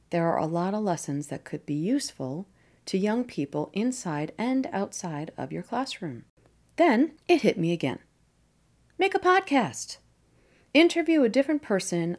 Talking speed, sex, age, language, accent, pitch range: 155 wpm, female, 40-59, English, American, 160-240 Hz